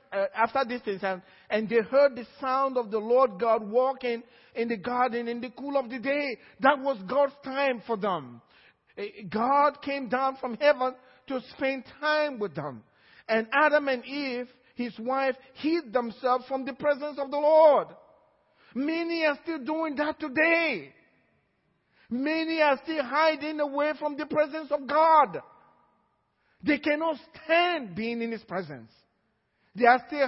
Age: 50-69